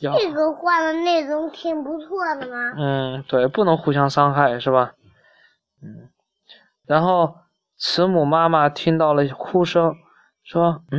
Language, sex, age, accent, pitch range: Chinese, male, 20-39, native, 150-215 Hz